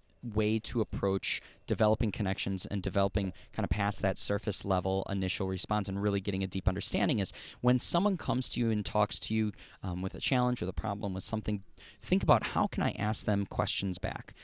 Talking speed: 205 wpm